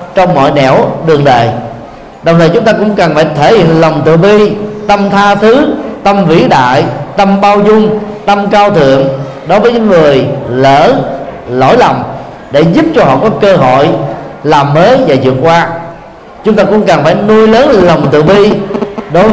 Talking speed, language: 185 wpm, Vietnamese